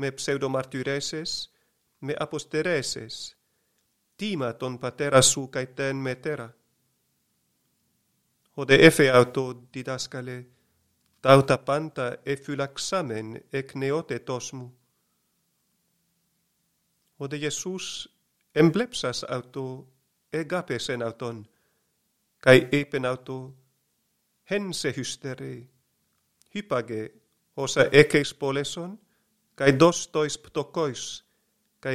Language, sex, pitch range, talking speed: Greek, male, 125-155 Hz, 75 wpm